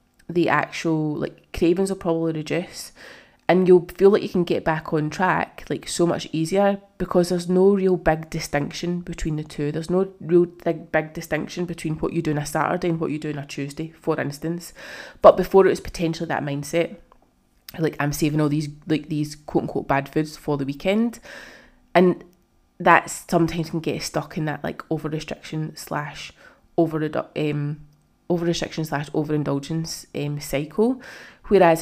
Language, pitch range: English, 150-175 Hz